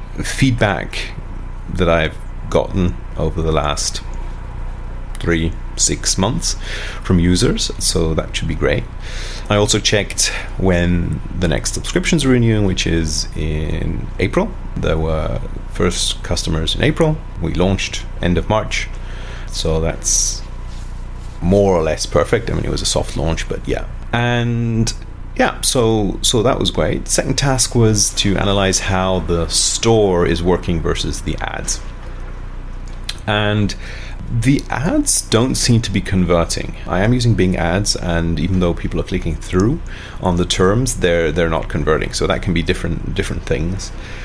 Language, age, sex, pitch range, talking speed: English, 30-49, male, 85-105 Hz, 150 wpm